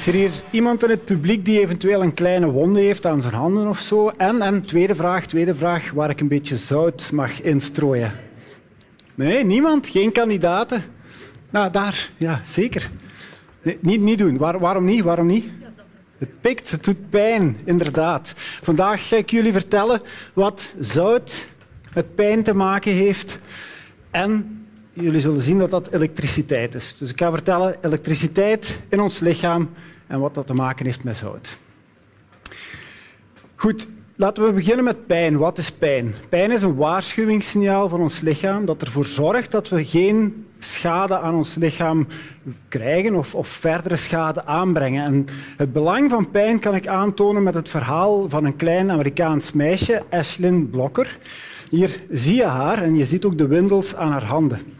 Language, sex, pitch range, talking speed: Dutch, male, 155-205 Hz, 165 wpm